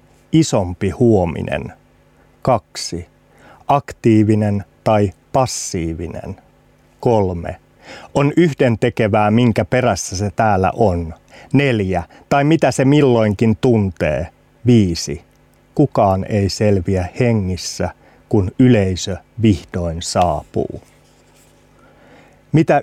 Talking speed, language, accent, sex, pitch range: 80 wpm, Finnish, native, male, 95-125 Hz